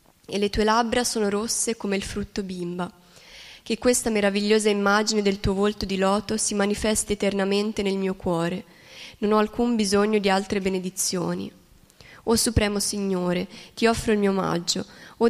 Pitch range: 190-225 Hz